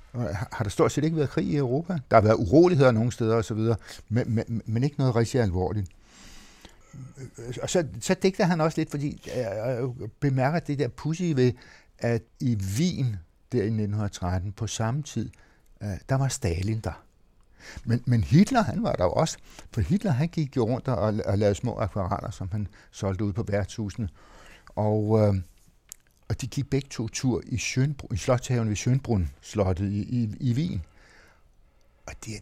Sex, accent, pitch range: male, native, 100-125 Hz